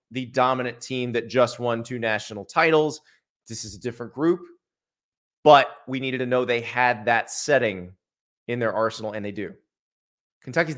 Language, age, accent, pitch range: English, 30-49, American, 120-145 Hz